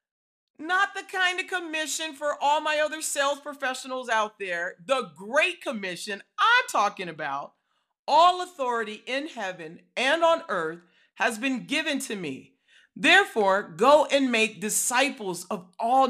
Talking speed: 140 wpm